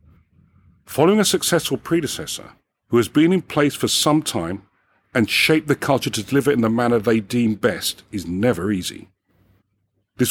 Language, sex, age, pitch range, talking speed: English, male, 40-59, 105-150 Hz, 165 wpm